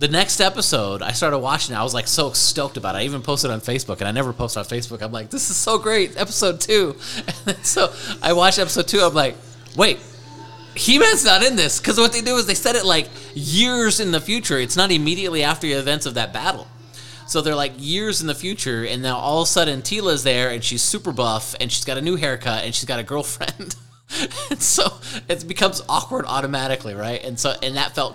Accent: American